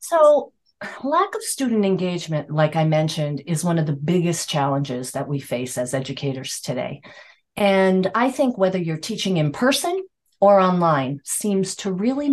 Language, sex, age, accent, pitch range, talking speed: English, female, 40-59, American, 145-220 Hz, 160 wpm